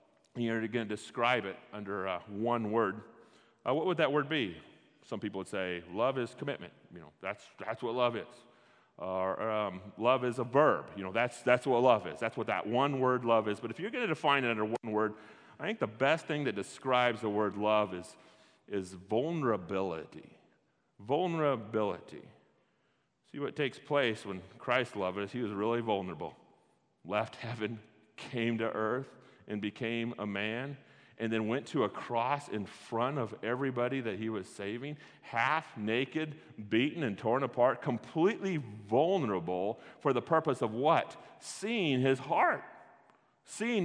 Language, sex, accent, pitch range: English, male, American, 110-150 Hz